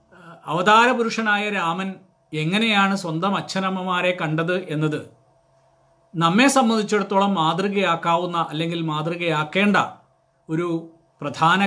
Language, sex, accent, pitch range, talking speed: Malayalam, male, native, 160-205 Hz, 70 wpm